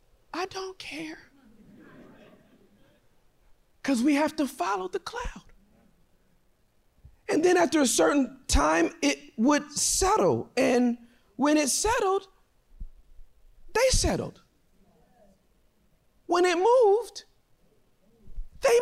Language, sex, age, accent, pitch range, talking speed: English, male, 40-59, American, 240-320 Hz, 90 wpm